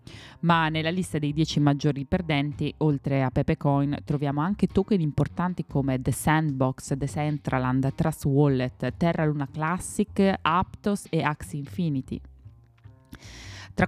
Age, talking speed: 20-39, 125 wpm